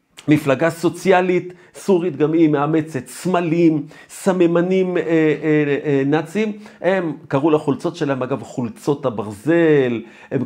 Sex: male